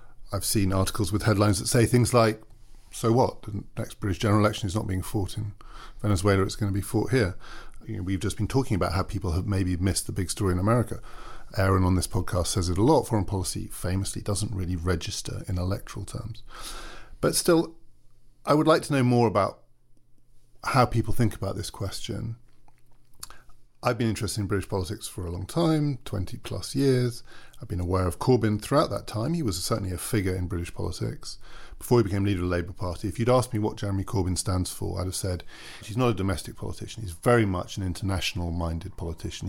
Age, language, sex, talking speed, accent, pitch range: 40-59, English, male, 210 wpm, British, 95-115 Hz